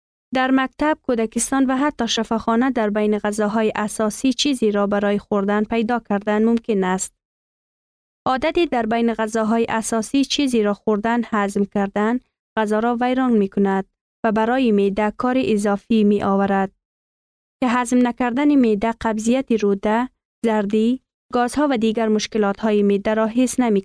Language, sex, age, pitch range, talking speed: Persian, female, 20-39, 210-255 Hz, 140 wpm